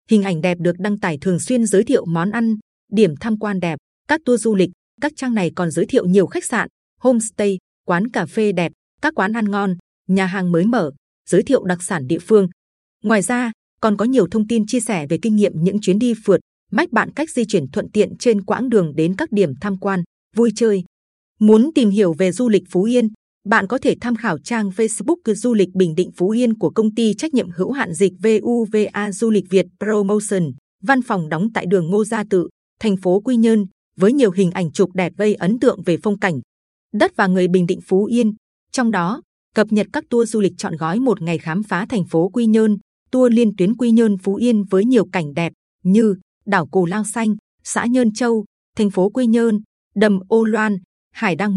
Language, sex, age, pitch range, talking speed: Vietnamese, female, 20-39, 185-230 Hz, 225 wpm